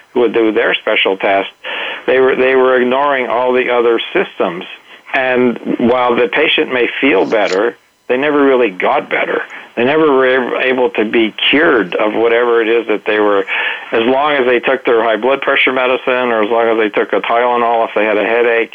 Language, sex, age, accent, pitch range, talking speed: English, male, 50-69, American, 110-125 Hz, 205 wpm